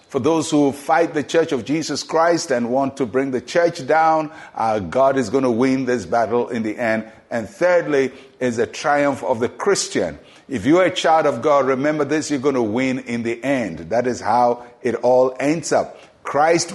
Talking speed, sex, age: 210 wpm, male, 50-69